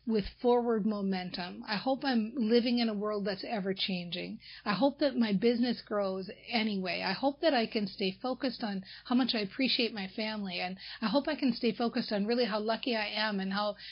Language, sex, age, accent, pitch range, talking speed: English, female, 40-59, American, 195-240 Hz, 205 wpm